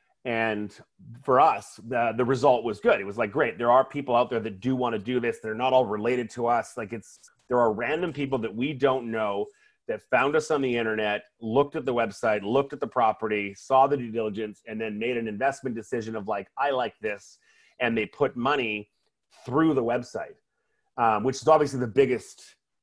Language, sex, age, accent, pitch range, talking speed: English, male, 30-49, American, 110-135 Hz, 215 wpm